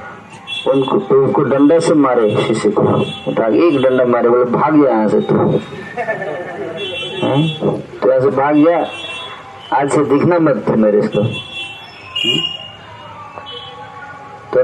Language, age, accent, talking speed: Hindi, 50-69, native, 105 wpm